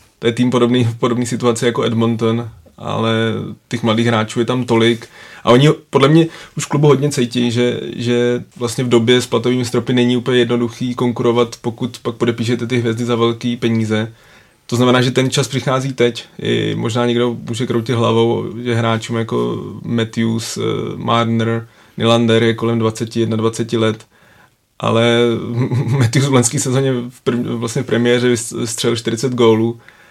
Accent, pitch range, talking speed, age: native, 115-125 Hz, 155 wpm, 20-39